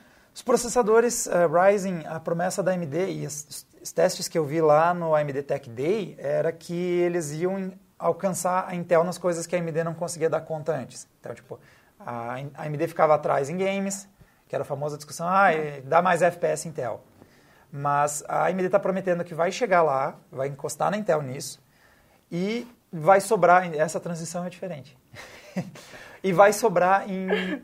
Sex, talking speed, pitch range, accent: male, 180 wpm, 145-190 Hz, Brazilian